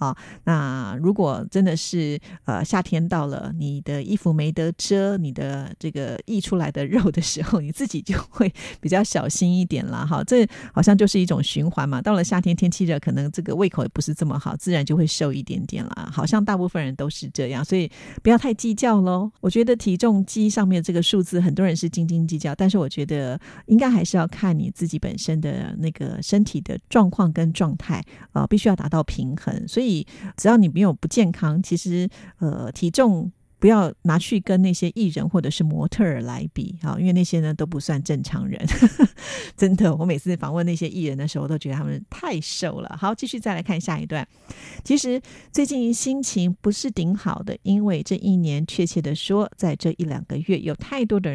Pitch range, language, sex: 155-200 Hz, Japanese, female